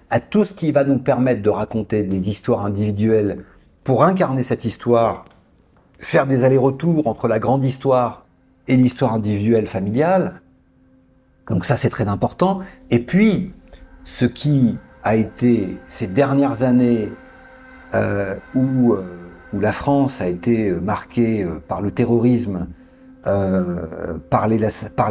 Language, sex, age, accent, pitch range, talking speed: French, male, 50-69, French, 110-155 Hz, 130 wpm